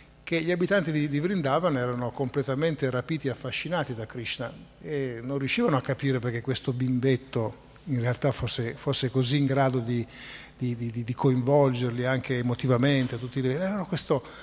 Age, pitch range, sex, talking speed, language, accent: 50-69, 125-150 Hz, male, 160 wpm, Italian, native